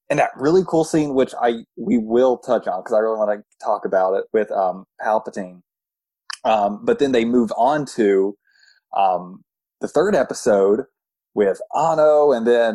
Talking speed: 175 wpm